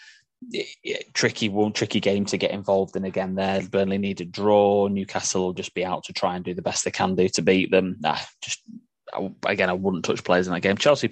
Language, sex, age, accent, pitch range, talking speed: English, male, 10-29, British, 90-110 Hz, 245 wpm